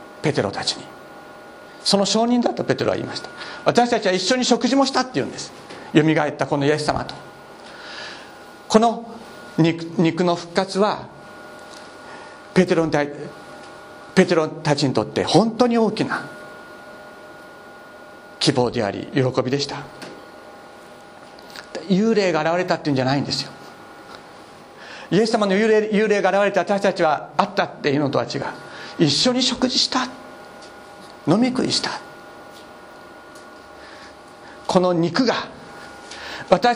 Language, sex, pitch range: Japanese, male, 160-235 Hz